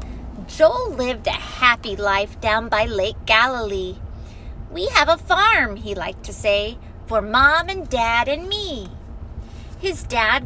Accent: American